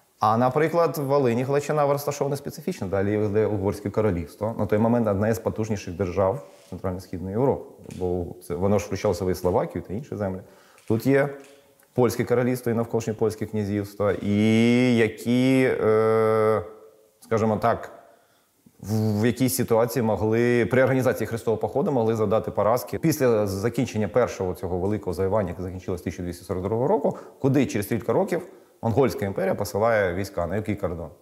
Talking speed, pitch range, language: 145 wpm, 100-125 Hz, Ukrainian